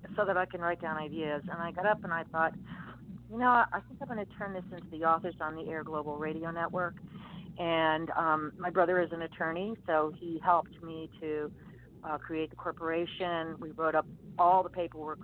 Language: English